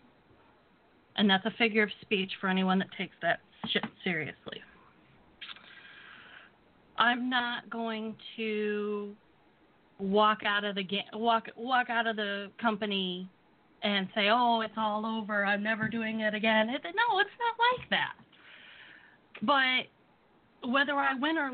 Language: English